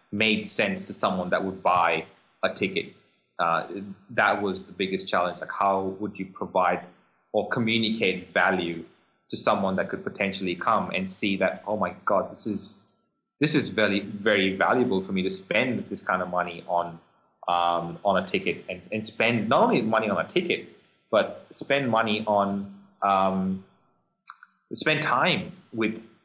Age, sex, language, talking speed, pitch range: 20-39, male, English, 165 wpm, 95-110 Hz